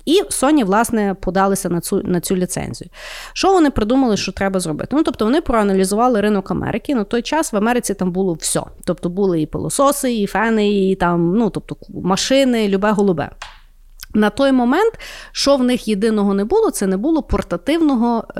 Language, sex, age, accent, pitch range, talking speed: Ukrainian, female, 30-49, native, 190-255 Hz, 180 wpm